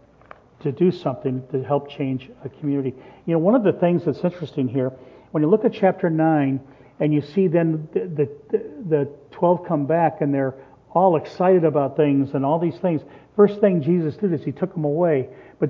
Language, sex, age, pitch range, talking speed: English, male, 50-69, 145-185 Hz, 205 wpm